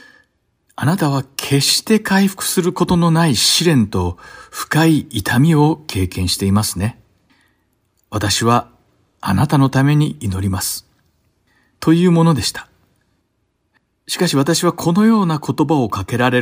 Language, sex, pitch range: Japanese, male, 110-155 Hz